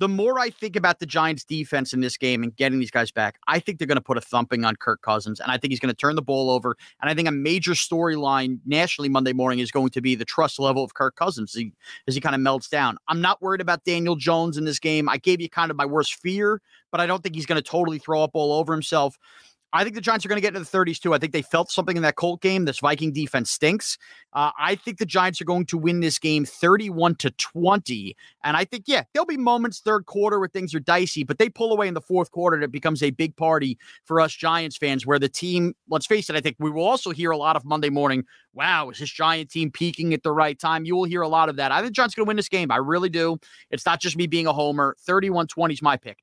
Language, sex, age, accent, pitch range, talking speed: English, male, 30-49, American, 145-180 Hz, 285 wpm